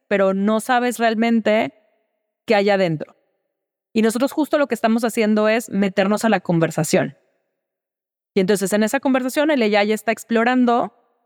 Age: 30-49